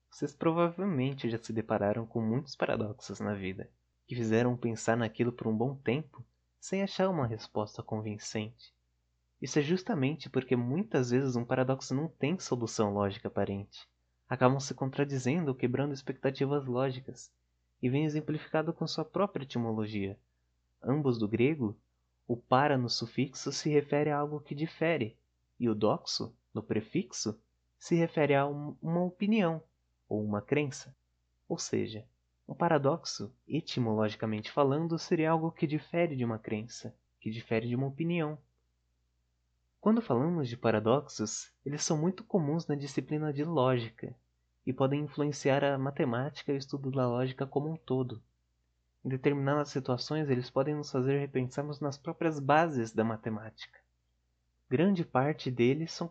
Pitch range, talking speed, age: 110-150 Hz, 145 wpm, 20-39